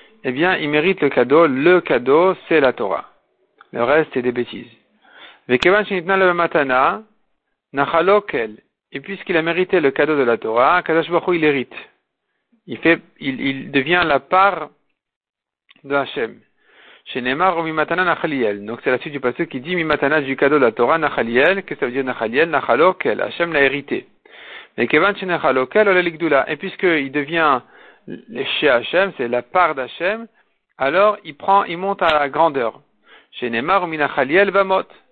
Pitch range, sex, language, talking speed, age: 135-185 Hz, male, French, 120 wpm, 50-69